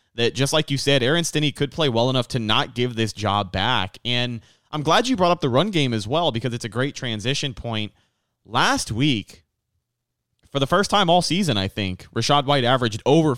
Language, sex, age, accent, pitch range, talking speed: English, male, 30-49, American, 115-145 Hz, 215 wpm